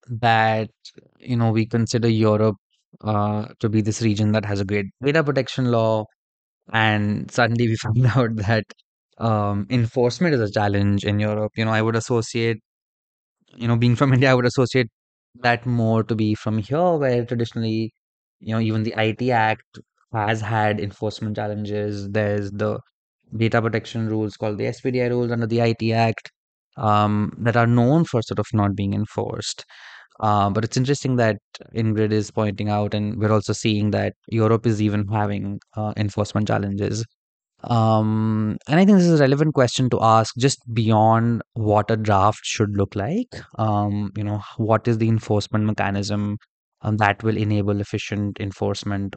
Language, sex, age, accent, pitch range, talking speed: English, male, 20-39, Indian, 105-115 Hz, 170 wpm